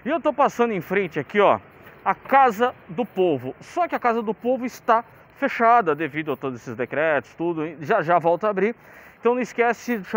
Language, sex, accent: Portuguese, male, Brazilian